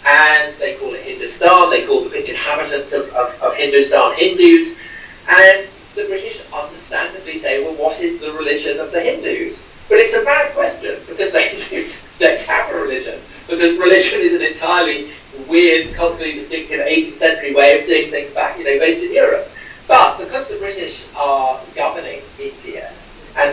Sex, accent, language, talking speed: male, British, English, 175 wpm